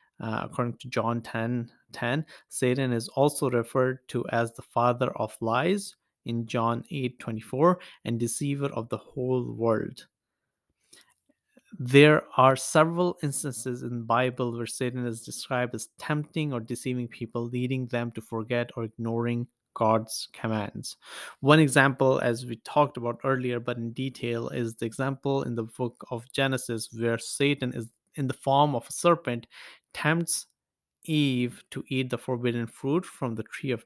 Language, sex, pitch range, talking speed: English, male, 115-140 Hz, 155 wpm